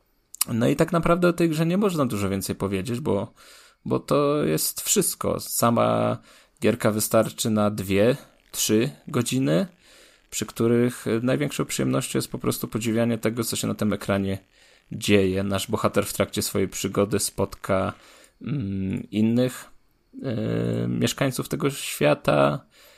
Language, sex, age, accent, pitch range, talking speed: Polish, male, 20-39, native, 100-120 Hz, 130 wpm